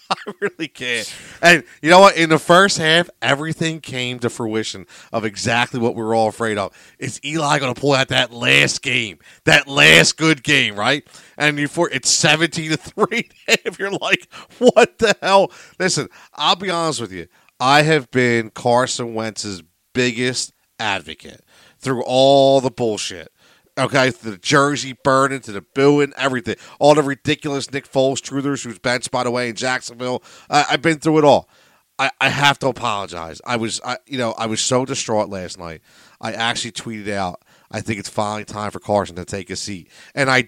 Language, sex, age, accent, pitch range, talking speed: English, male, 40-59, American, 115-155 Hz, 190 wpm